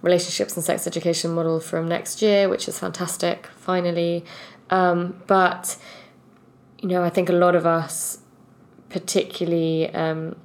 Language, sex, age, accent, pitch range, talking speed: English, female, 20-39, British, 160-175 Hz, 140 wpm